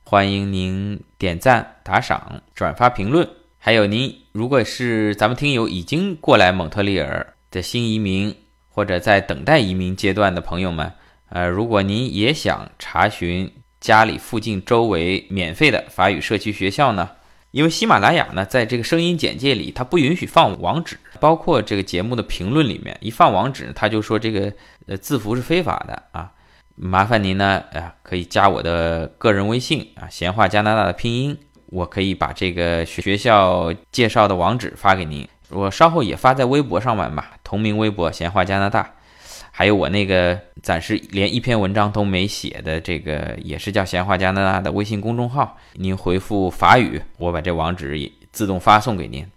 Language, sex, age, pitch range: Chinese, male, 20-39, 90-110 Hz